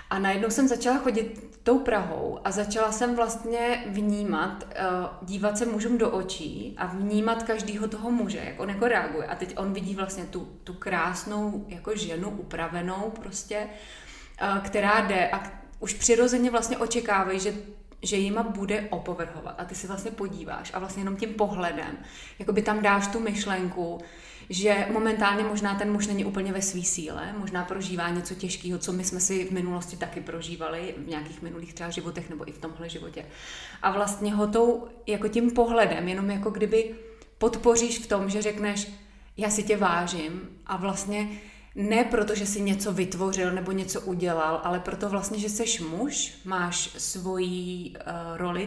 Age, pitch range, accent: 20-39, 180-215 Hz, native